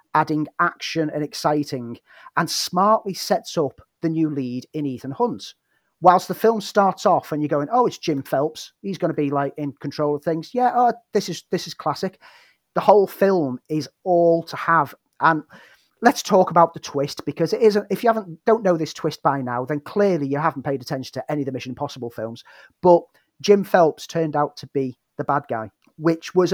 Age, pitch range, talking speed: 40-59, 145-180 Hz, 210 wpm